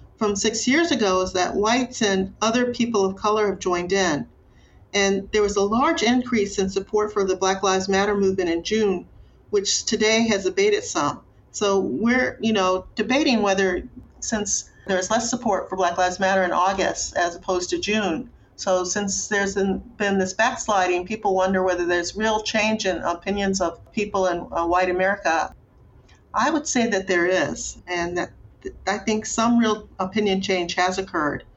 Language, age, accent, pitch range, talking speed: English, 40-59, American, 180-215 Hz, 175 wpm